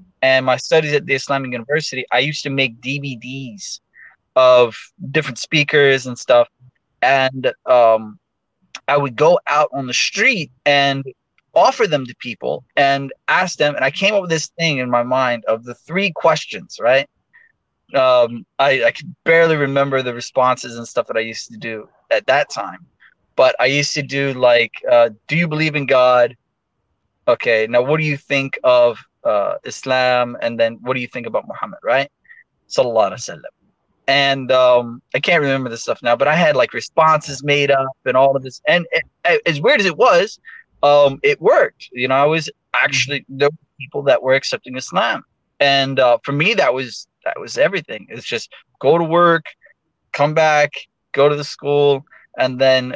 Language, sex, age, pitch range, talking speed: English, male, 20-39, 125-150 Hz, 185 wpm